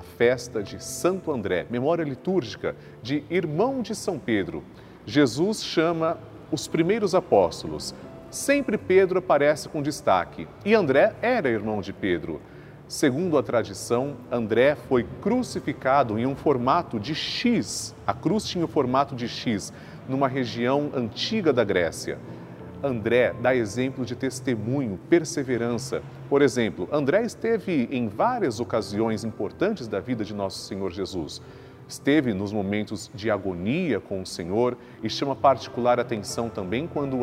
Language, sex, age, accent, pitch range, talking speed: Portuguese, male, 40-59, Brazilian, 110-150 Hz, 135 wpm